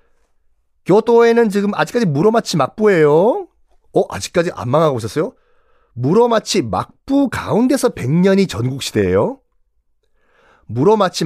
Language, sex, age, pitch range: Korean, male, 40-59, 120-195 Hz